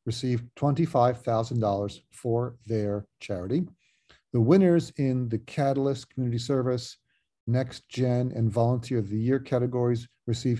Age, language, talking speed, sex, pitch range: 50-69, English, 120 wpm, male, 115-135 Hz